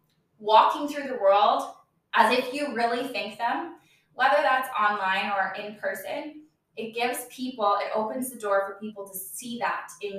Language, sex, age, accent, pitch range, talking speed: English, female, 20-39, American, 200-255 Hz, 170 wpm